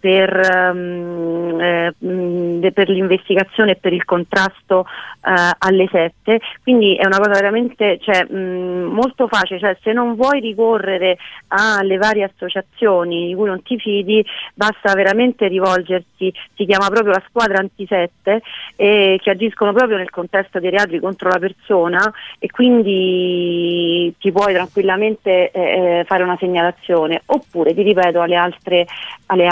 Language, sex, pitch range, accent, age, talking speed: Italian, female, 175-200 Hz, native, 40-59, 130 wpm